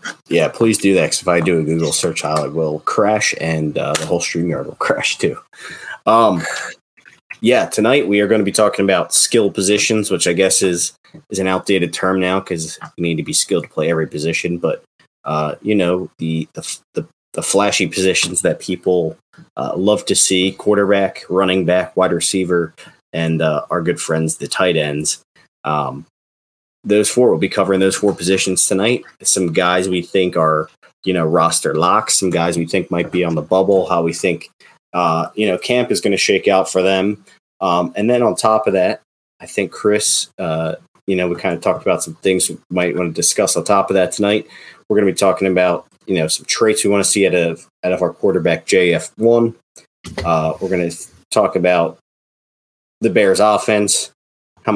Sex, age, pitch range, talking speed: male, 30-49, 85-100 Hz, 200 wpm